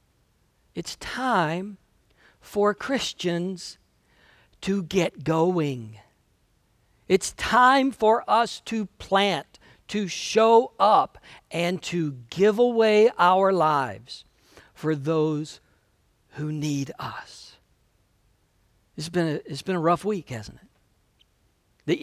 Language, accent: English, American